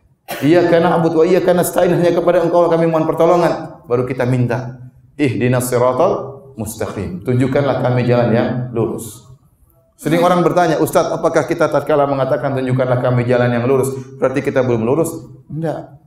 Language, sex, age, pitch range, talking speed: Indonesian, male, 30-49, 130-175 Hz, 155 wpm